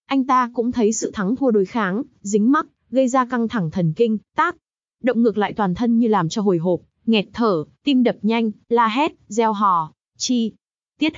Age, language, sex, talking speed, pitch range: 20-39, Vietnamese, female, 210 wpm, 205-250 Hz